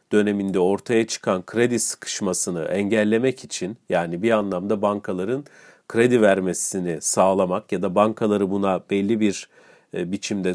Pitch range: 100-130 Hz